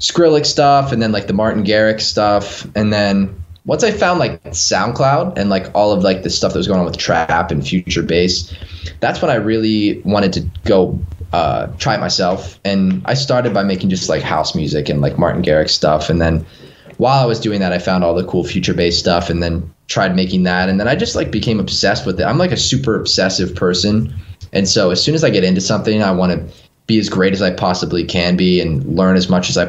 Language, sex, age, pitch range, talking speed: English, male, 20-39, 90-105 Hz, 240 wpm